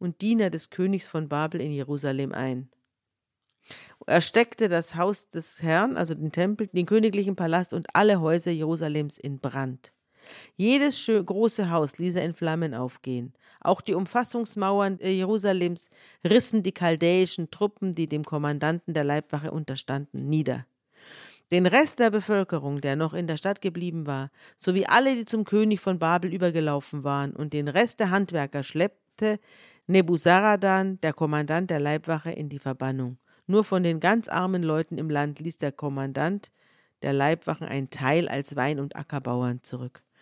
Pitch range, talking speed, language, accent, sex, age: 150-190 Hz, 155 wpm, German, German, female, 40-59